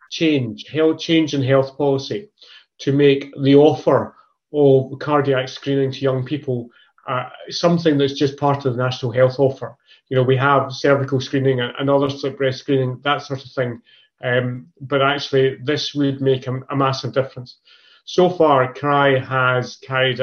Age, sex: 30-49, male